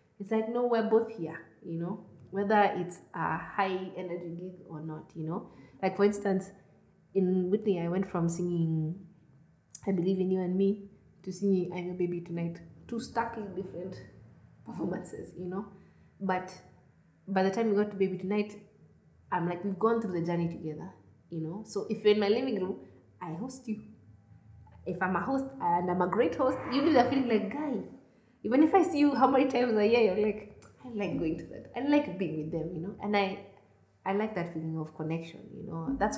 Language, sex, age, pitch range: English, female, 20-39, 170-210 Hz